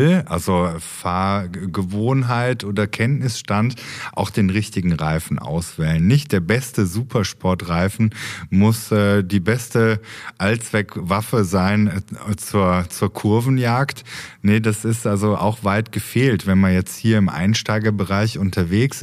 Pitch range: 95-115 Hz